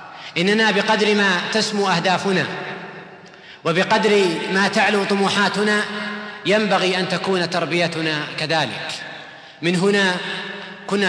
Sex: male